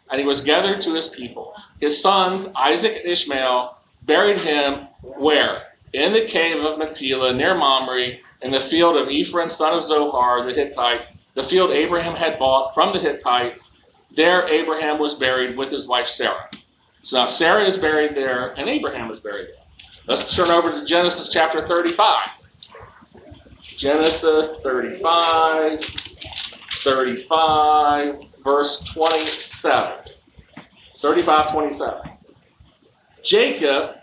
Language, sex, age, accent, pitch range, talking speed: English, male, 40-59, American, 135-175 Hz, 125 wpm